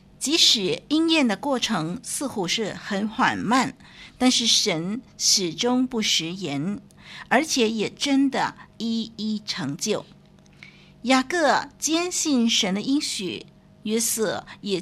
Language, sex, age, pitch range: Chinese, female, 50-69, 195-255 Hz